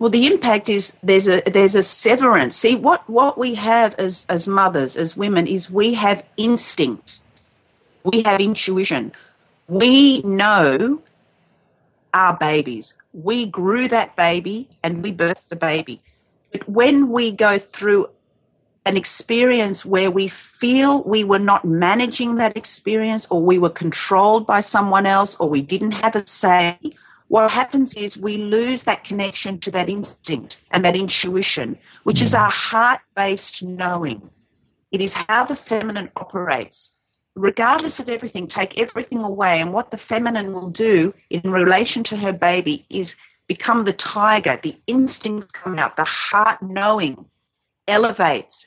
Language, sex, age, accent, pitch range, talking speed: English, female, 40-59, Australian, 185-230 Hz, 150 wpm